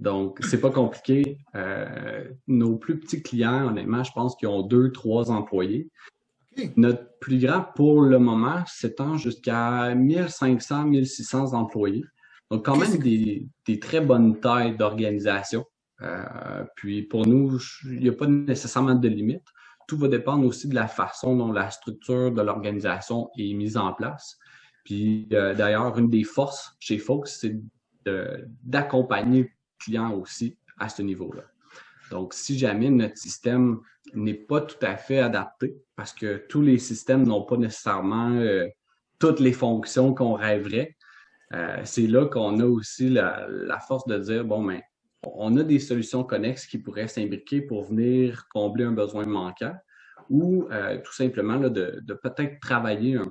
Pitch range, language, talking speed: 110-130 Hz, French, 160 wpm